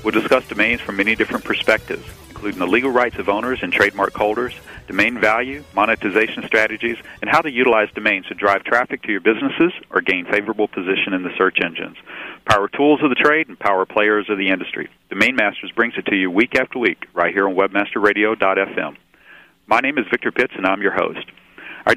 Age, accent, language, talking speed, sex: 40-59, American, English, 200 wpm, male